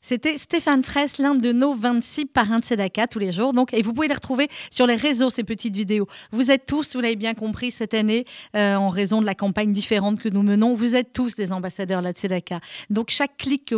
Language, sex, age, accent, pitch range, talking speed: French, female, 30-49, French, 205-250 Hz, 245 wpm